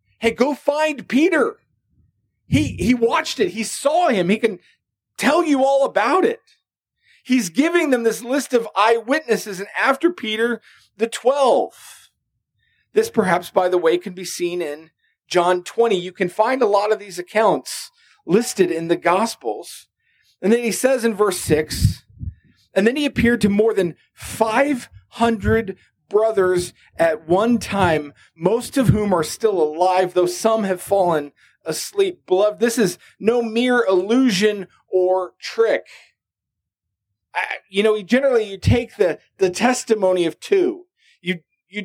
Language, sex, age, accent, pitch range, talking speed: English, male, 40-59, American, 185-255 Hz, 150 wpm